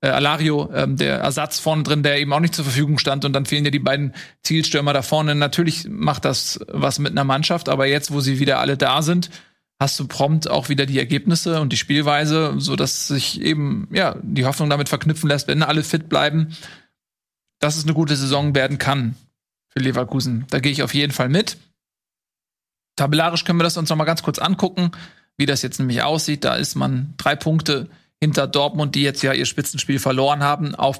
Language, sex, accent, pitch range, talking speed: German, male, German, 135-155 Hz, 205 wpm